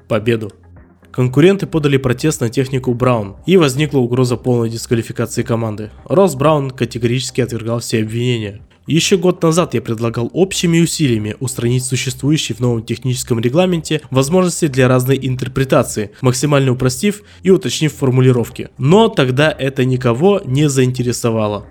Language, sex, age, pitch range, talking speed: Russian, male, 20-39, 115-145 Hz, 125 wpm